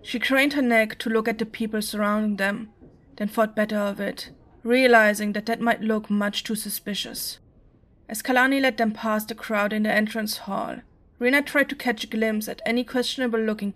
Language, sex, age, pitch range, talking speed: English, female, 20-39, 210-245 Hz, 190 wpm